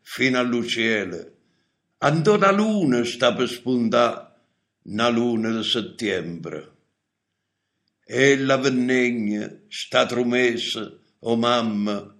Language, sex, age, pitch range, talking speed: Italian, male, 60-79, 120-165 Hz, 95 wpm